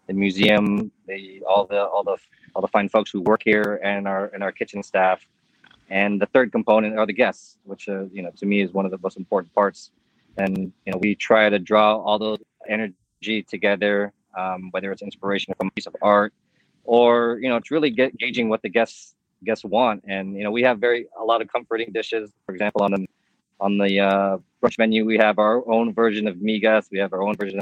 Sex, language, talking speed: male, English, 225 wpm